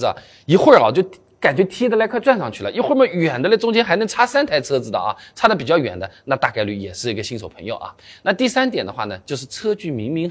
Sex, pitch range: male, 130-215 Hz